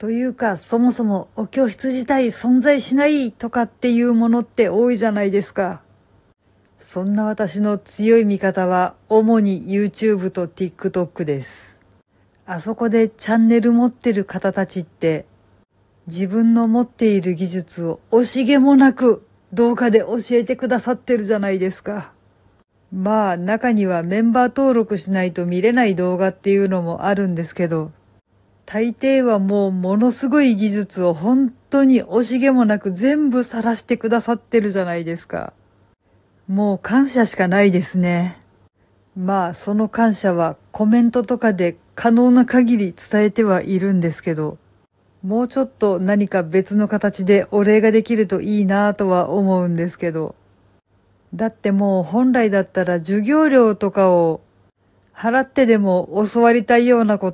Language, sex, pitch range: Japanese, female, 180-235 Hz